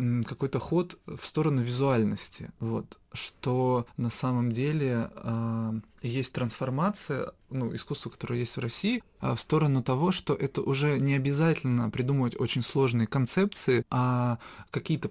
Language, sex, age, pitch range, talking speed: Russian, male, 20-39, 120-150 Hz, 130 wpm